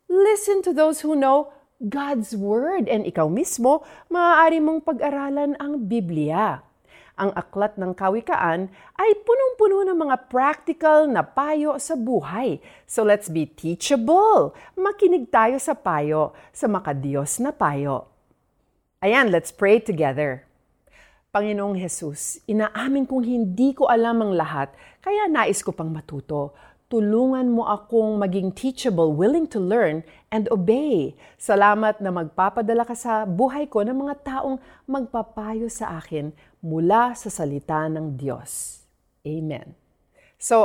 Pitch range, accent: 170-275 Hz, native